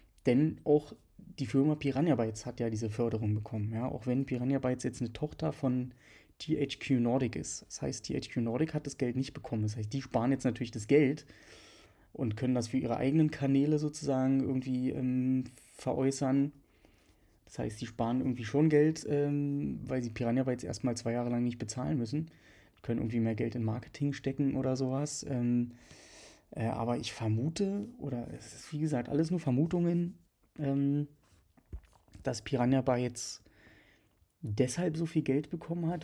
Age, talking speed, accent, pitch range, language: 20-39, 165 wpm, German, 115-140 Hz, German